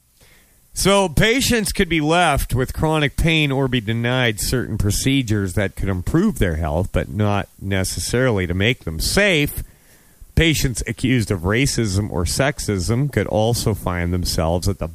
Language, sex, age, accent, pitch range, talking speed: English, male, 40-59, American, 90-150 Hz, 150 wpm